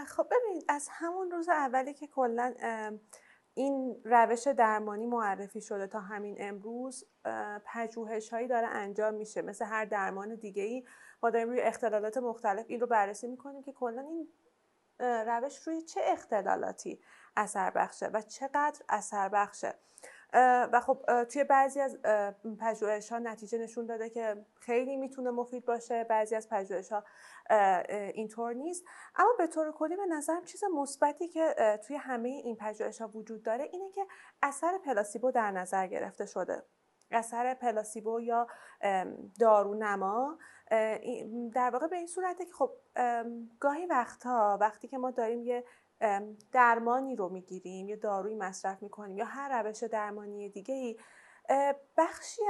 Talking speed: 140 wpm